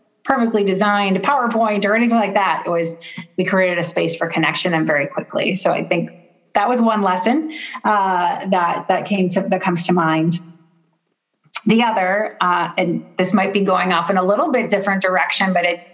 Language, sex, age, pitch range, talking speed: English, female, 30-49, 170-210 Hz, 190 wpm